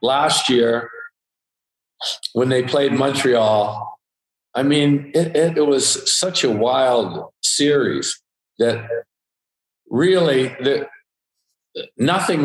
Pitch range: 115-140 Hz